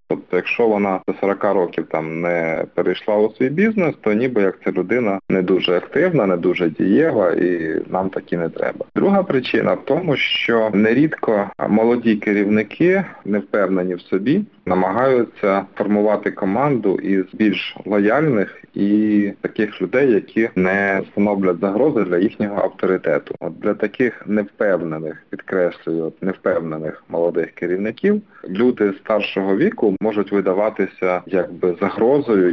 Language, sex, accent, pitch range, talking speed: Ukrainian, male, native, 95-115 Hz, 130 wpm